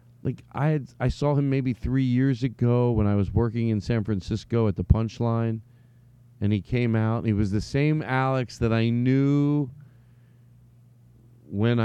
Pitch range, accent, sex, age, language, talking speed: 105-130 Hz, American, male, 40-59, English, 165 wpm